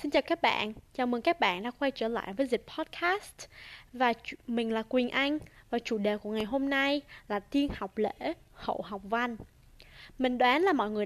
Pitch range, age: 215-275 Hz, 10-29